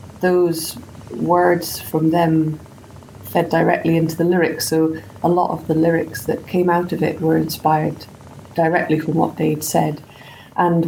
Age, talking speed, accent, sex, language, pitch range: 20-39, 155 wpm, British, female, English, 155-170 Hz